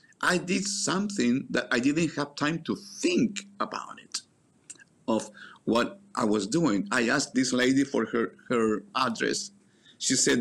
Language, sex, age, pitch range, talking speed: English, male, 50-69, 120-200 Hz, 155 wpm